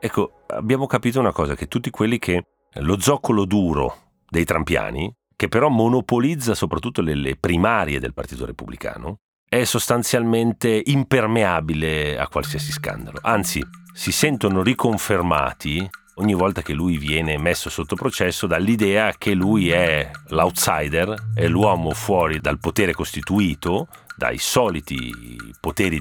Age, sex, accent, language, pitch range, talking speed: 40-59, male, native, Italian, 75-115 Hz, 130 wpm